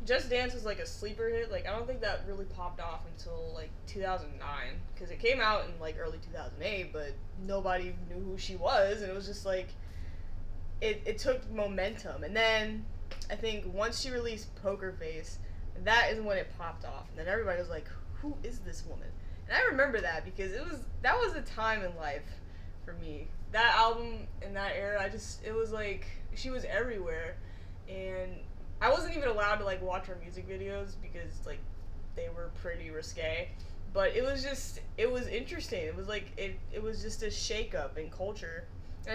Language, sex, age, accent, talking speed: English, female, 10-29, American, 200 wpm